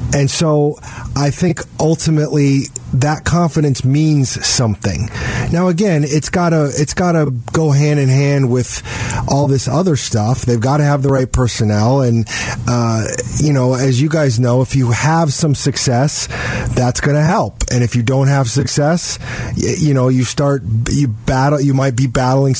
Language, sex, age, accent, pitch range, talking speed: English, male, 30-49, American, 120-150 Hz, 180 wpm